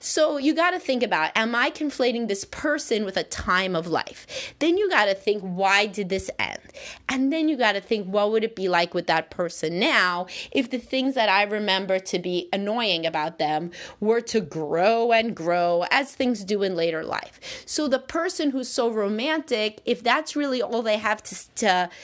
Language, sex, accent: English, female, American